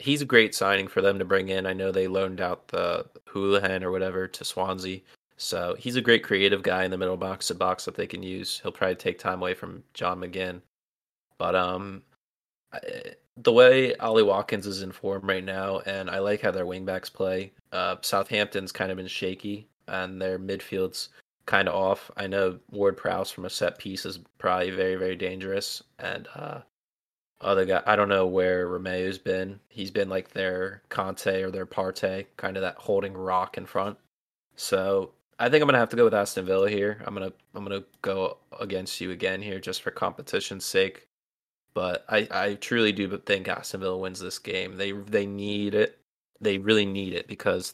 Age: 20-39